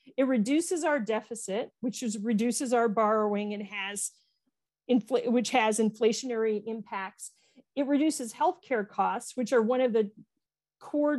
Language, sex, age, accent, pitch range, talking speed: English, female, 40-59, American, 220-270 Hz, 140 wpm